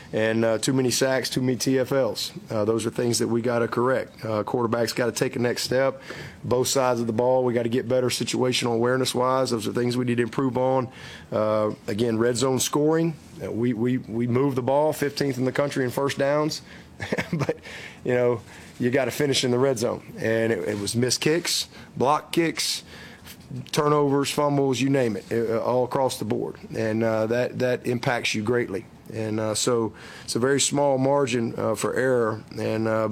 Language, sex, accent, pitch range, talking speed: English, male, American, 110-130 Hz, 205 wpm